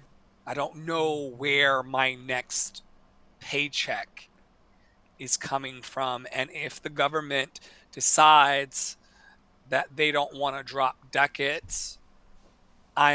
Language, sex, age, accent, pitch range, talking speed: English, male, 30-49, American, 130-155 Hz, 105 wpm